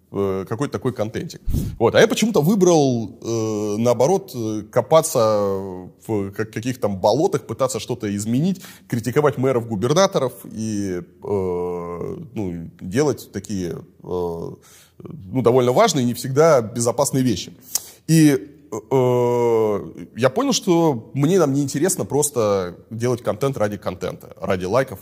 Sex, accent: male, native